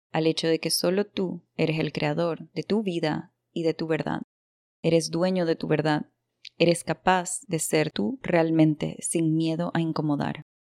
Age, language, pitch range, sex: 20-39, Spanish, 155-175 Hz, female